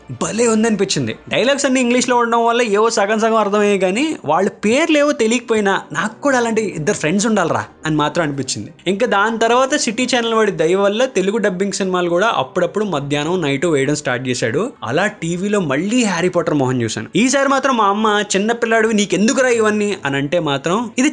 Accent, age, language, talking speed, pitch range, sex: native, 20-39, Telugu, 185 wpm, 145-225 Hz, male